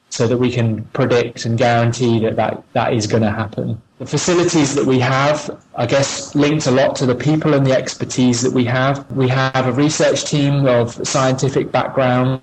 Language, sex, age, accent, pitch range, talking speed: English, male, 20-39, British, 115-130 Hz, 200 wpm